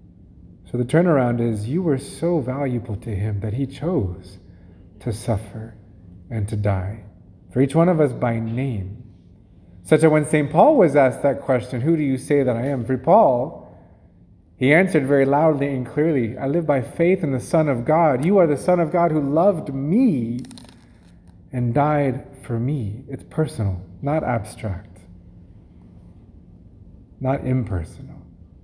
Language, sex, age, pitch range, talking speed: English, male, 30-49, 100-150 Hz, 160 wpm